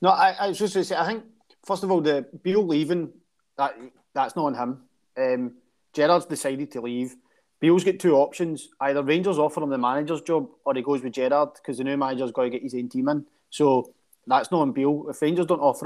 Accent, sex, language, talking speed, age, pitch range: British, male, English, 235 wpm, 30-49, 125-155 Hz